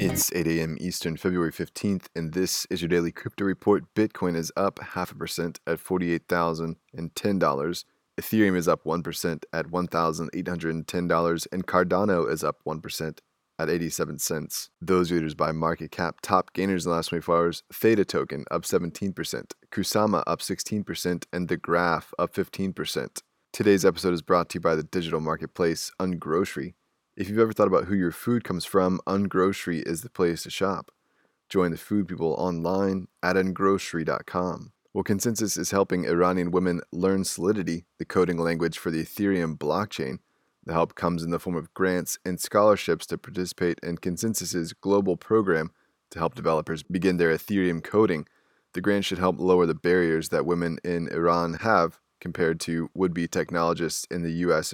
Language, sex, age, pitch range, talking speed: English, male, 20-39, 85-95 Hz, 165 wpm